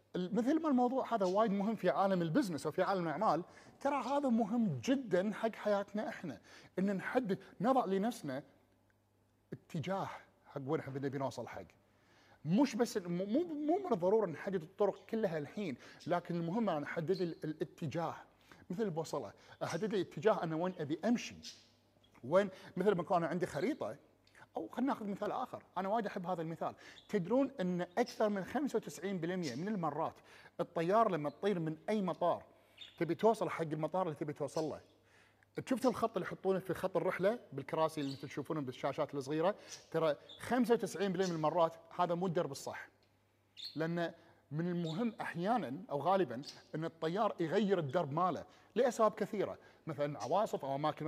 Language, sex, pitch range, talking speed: Arabic, male, 150-210 Hz, 150 wpm